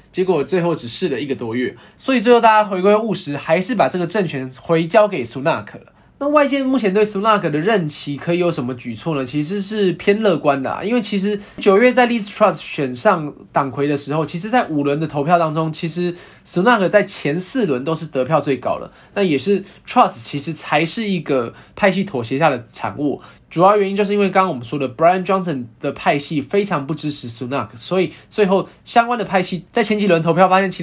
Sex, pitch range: male, 140-200 Hz